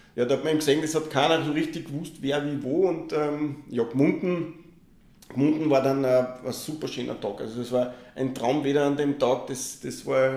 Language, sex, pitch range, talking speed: German, male, 135-155 Hz, 220 wpm